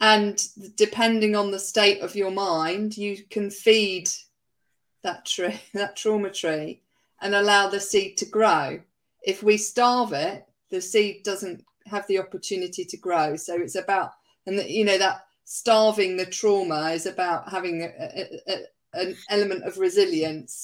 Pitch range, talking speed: 180-220 Hz, 160 wpm